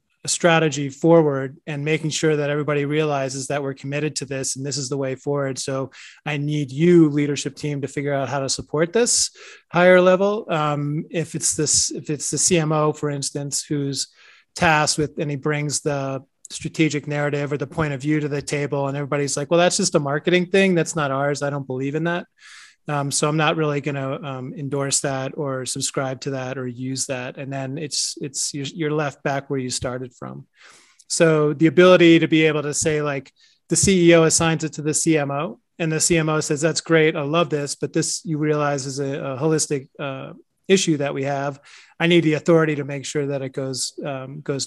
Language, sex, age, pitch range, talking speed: English, male, 30-49, 140-160 Hz, 210 wpm